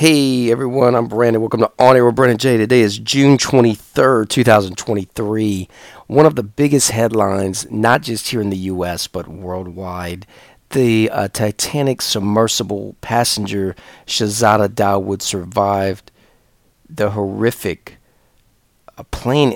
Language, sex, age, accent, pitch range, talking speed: English, male, 40-59, American, 95-115 Hz, 125 wpm